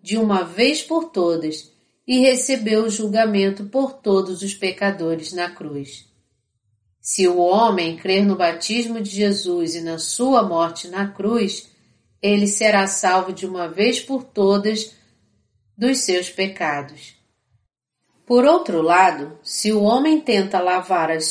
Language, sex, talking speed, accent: Portuguese, female, 140 wpm, Brazilian